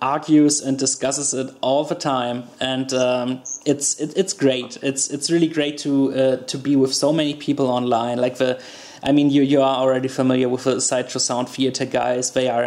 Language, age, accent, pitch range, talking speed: English, 20-39, German, 130-145 Hz, 205 wpm